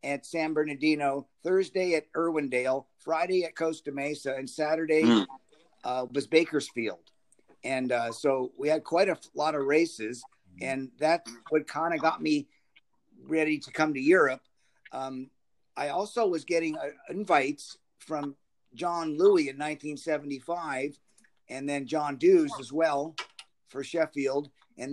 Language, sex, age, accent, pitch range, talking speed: English, male, 50-69, American, 130-160 Hz, 140 wpm